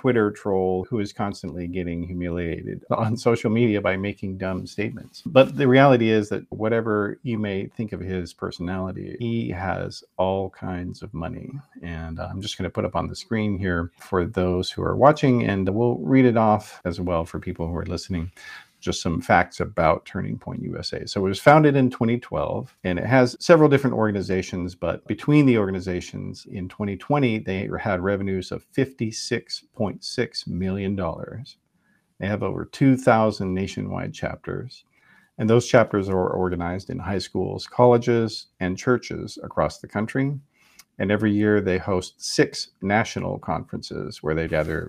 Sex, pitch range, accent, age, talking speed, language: male, 90-120 Hz, American, 50-69, 165 wpm, English